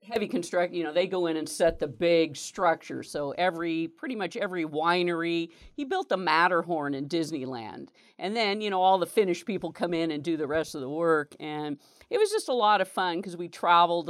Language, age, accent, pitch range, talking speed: English, 50-69, American, 165-225 Hz, 220 wpm